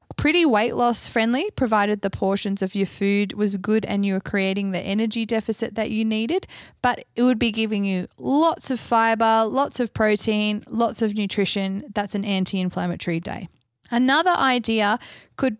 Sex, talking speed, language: female, 170 wpm, English